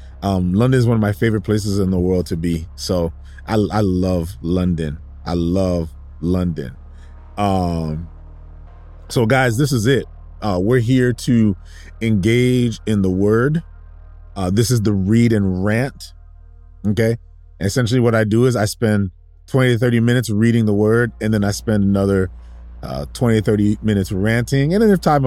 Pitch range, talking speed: 85-115 Hz, 170 wpm